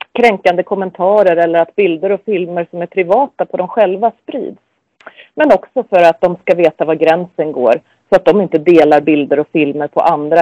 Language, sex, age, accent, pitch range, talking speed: Swedish, female, 30-49, native, 165-225 Hz, 195 wpm